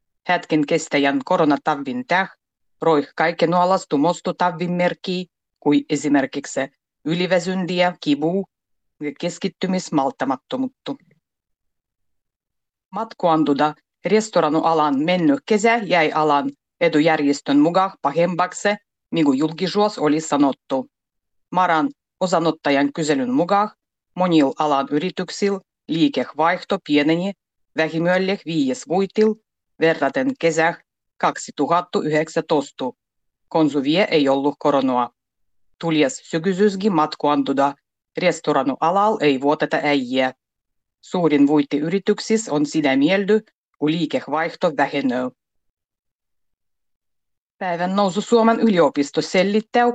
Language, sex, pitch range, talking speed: Finnish, female, 145-190 Hz, 80 wpm